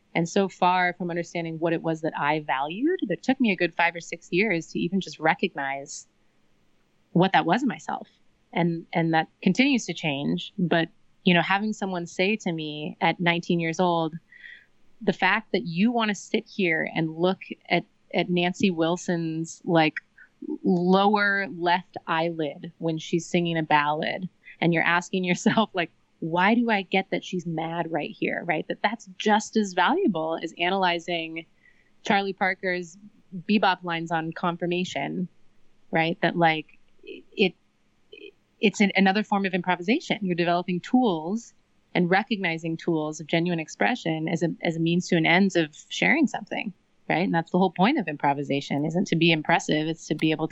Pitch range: 165-195 Hz